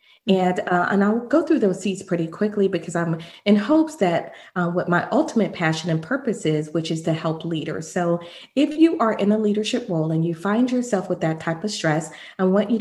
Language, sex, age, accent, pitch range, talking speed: English, female, 40-59, American, 170-225 Hz, 225 wpm